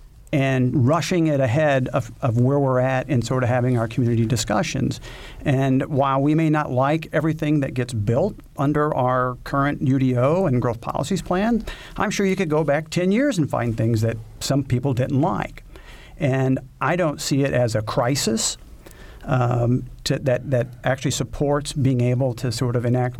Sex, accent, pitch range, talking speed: male, American, 125-150 Hz, 180 wpm